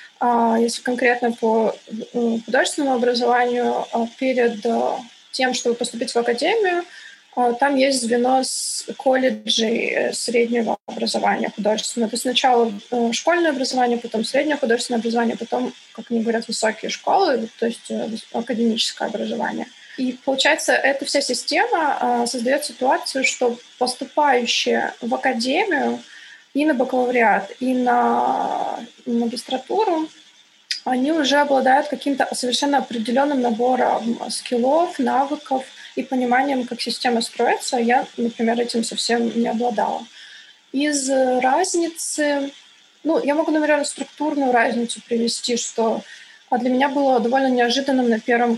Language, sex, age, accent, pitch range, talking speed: Russian, female, 20-39, native, 235-280 Hz, 115 wpm